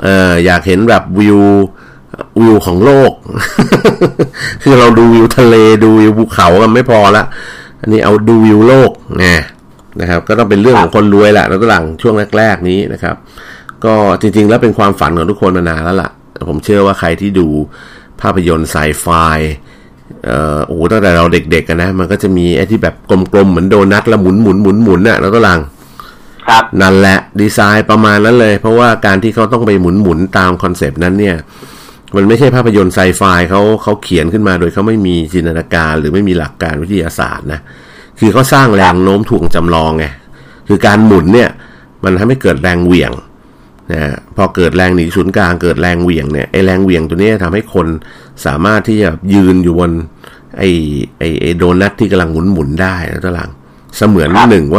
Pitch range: 85-105 Hz